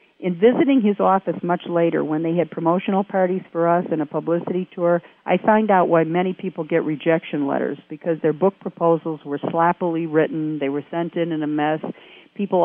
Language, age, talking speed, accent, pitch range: English, 50-69, 195 wpm, American, 165-185 Hz